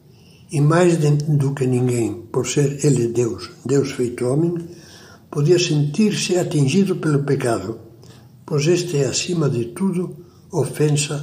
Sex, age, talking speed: male, 60-79, 130 wpm